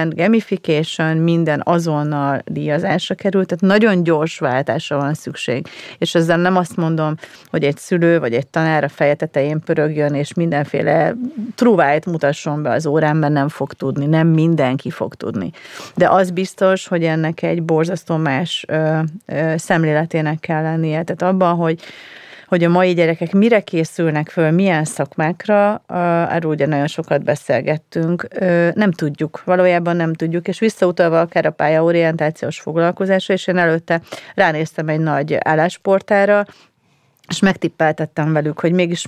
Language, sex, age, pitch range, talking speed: Hungarian, female, 30-49, 150-180 Hz, 145 wpm